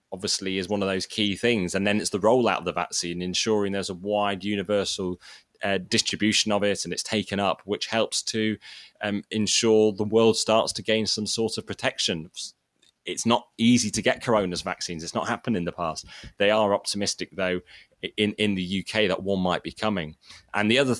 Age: 20-39